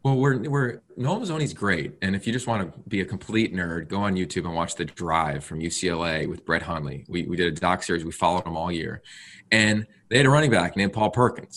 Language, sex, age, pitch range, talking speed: English, male, 20-39, 95-120 Hz, 250 wpm